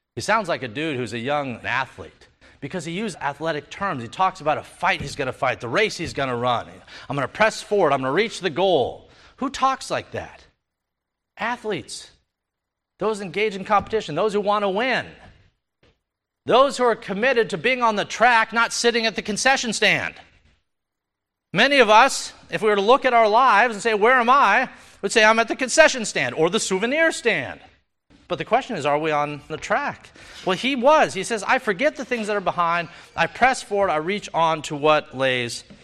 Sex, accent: male, American